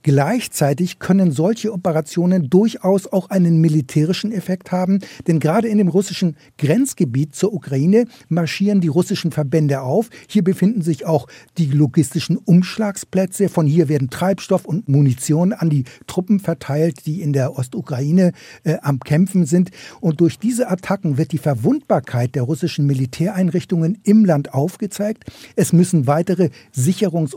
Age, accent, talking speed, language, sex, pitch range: 60-79, German, 145 wpm, German, male, 150-190 Hz